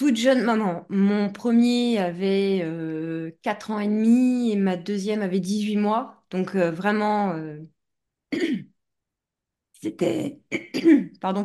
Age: 20-39